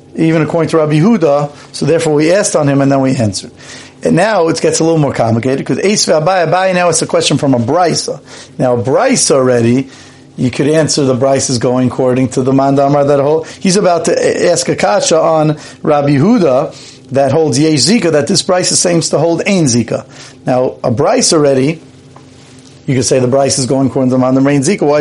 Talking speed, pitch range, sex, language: 210 wpm, 135-165 Hz, male, English